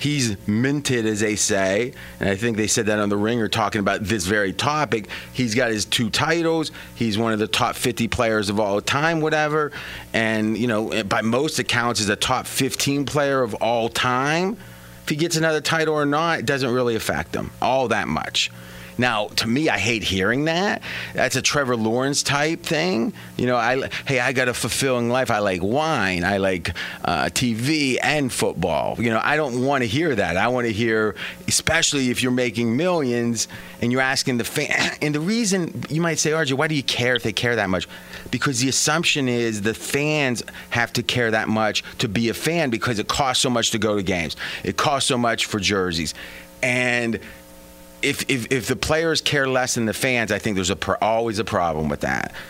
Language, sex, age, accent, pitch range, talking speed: English, male, 30-49, American, 105-140 Hz, 210 wpm